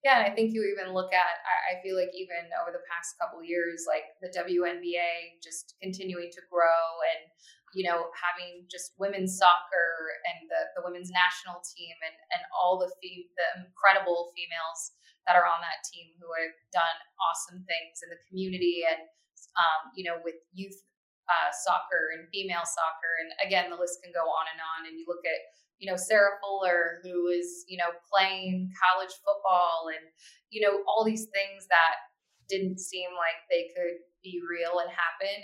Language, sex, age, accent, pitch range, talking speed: English, female, 20-39, American, 165-190 Hz, 185 wpm